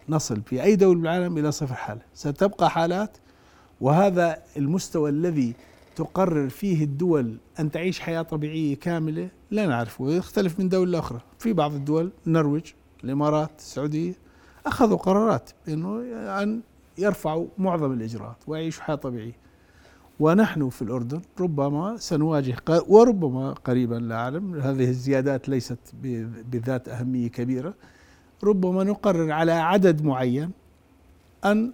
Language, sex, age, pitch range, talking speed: Arabic, male, 50-69, 125-165 Hz, 120 wpm